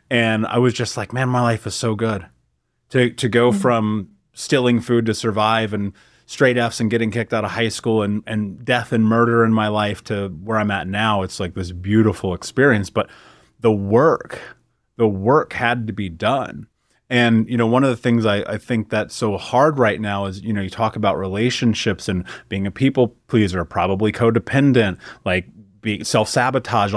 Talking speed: 195 wpm